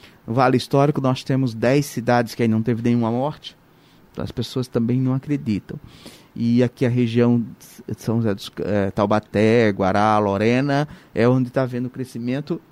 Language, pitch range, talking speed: Portuguese, 120-155 Hz, 165 wpm